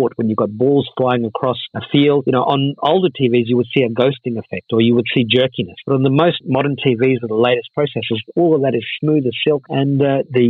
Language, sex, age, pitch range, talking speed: English, male, 50-69, 120-155 Hz, 250 wpm